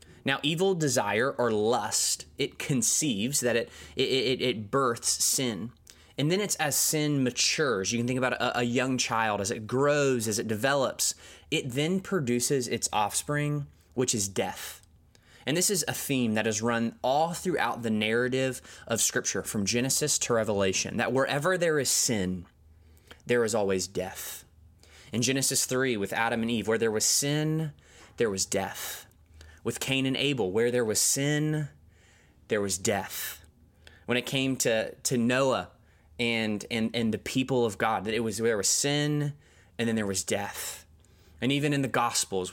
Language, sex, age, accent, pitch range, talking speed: English, male, 20-39, American, 100-135 Hz, 175 wpm